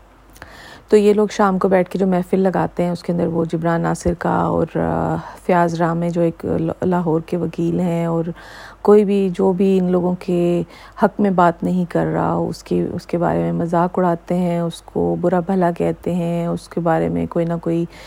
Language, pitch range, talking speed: Urdu, 170-190 Hz, 210 wpm